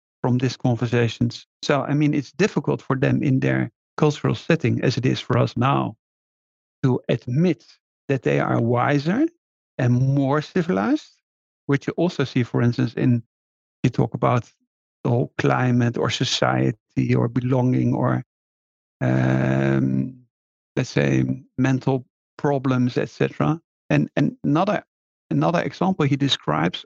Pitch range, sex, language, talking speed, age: 115-150 Hz, male, English, 135 wpm, 50-69